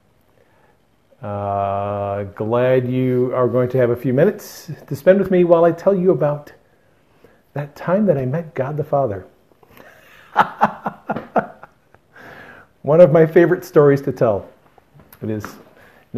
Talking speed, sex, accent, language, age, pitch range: 135 wpm, male, American, English, 40-59, 115-150 Hz